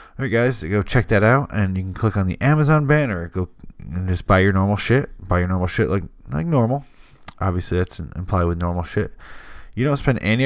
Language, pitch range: English, 90-110 Hz